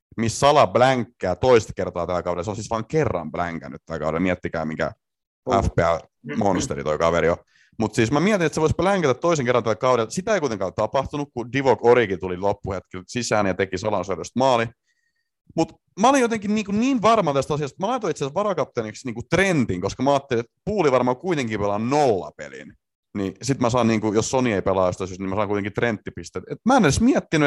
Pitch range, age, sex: 95-155 Hz, 30-49, male